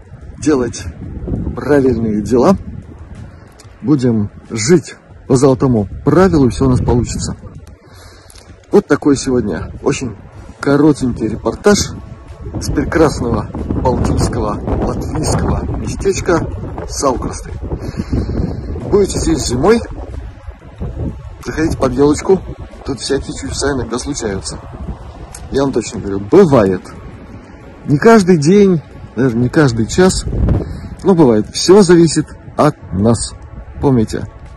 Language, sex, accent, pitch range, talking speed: Russian, male, native, 95-145 Hz, 95 wpm